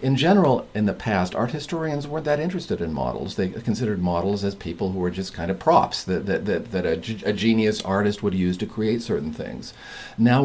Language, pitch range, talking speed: English, 90-115 Hz, 215 wpm